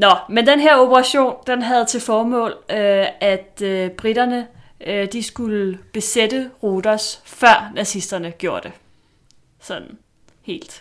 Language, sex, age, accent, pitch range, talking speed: Danish, female, 30-49, native, 180-215 Hz, 110 wpm